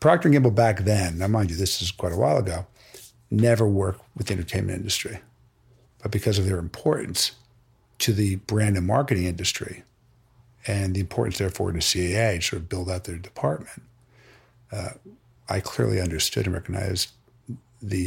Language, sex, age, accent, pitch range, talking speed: English, male, 50-69, American, 95-120 Hz, 170 wpm